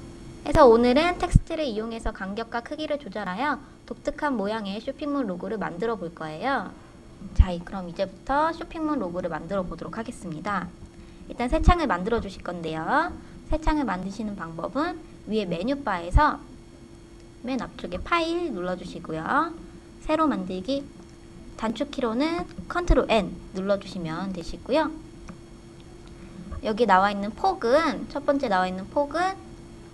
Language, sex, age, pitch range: Korean, male, 20-39, 190-295 Hz